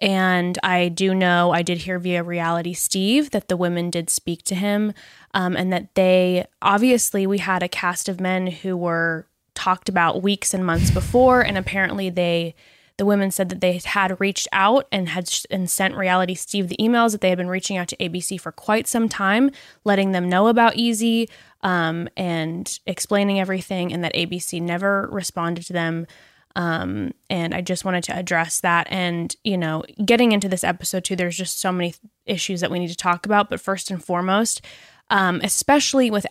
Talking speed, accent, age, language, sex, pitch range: 195 wpm, American, 10-29, English, female, 180-225 Hz